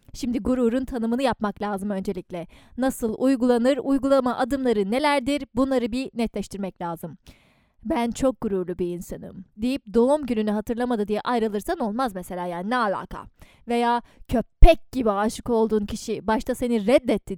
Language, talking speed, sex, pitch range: Turkish, 140 wpm, female, 215-265 Hz